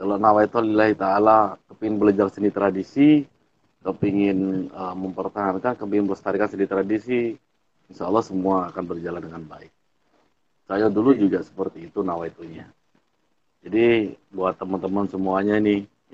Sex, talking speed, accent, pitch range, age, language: male, 115 wpm, native, 95-110 Hz, 40-59, Indonesian